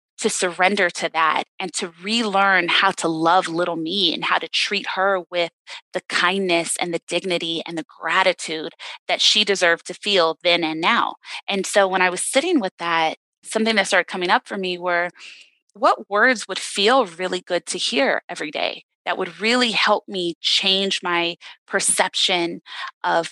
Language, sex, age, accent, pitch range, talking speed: English, female, 20-39, American, 170-205 Hz, 180 wpm